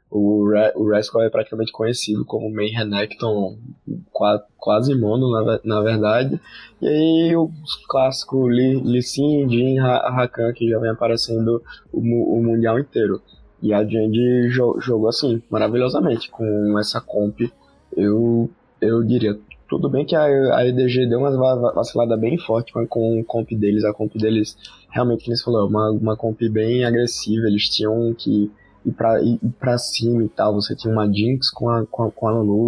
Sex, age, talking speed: male, 20-39, 160 wpm